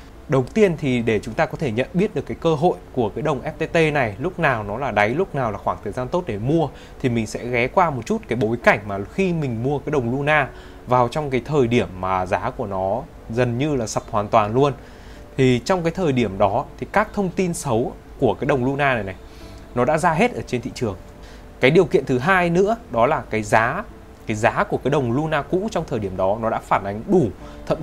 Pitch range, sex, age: 110-155 Hz, male, 20-39